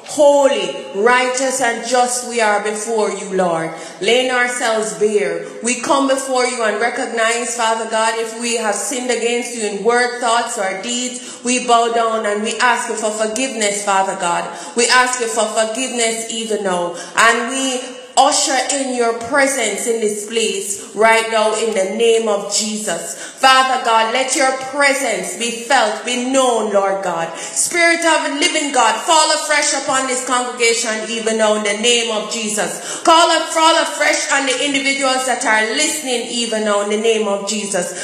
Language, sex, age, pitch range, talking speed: English, female, 30-49, 225-285 Hz, 170 wpm